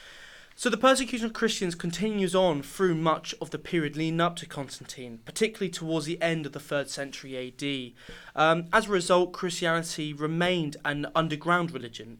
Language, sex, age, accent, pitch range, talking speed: English, male, 20-39, British, 140-170 Hz, 165 wpm